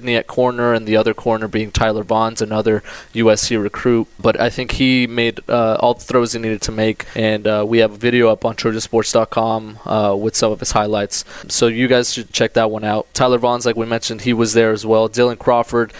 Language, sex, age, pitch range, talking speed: English, male, 20-39, 110-120 Hz, 220 wpm